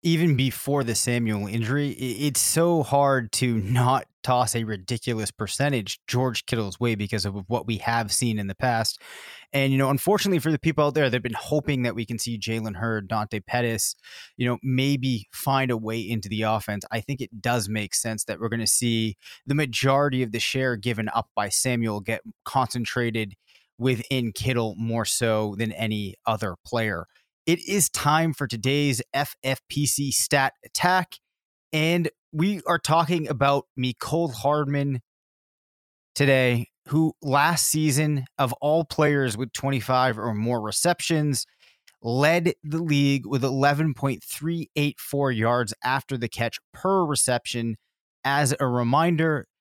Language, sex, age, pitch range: English, male, 20-39, 115-145 Hz